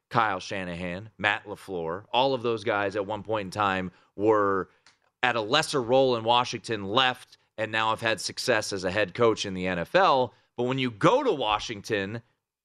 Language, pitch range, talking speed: English, 105-140 Hz, 185 wpm